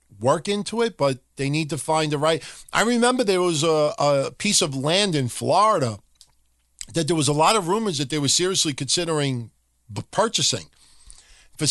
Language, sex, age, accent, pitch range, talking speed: English, male, 50-69, American, 125-170 Hz, 180 wpm